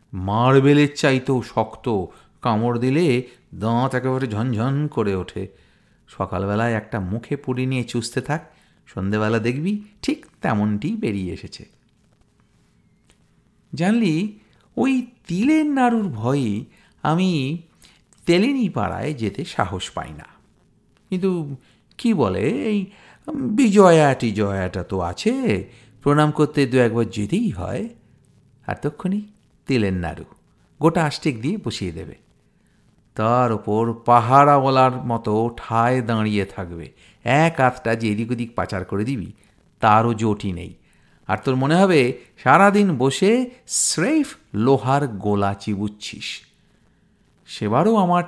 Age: 50-69